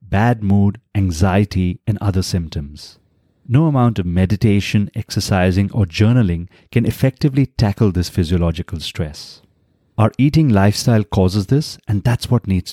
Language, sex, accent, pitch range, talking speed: English, male, Indian, 95-120 Hz, 130 wpm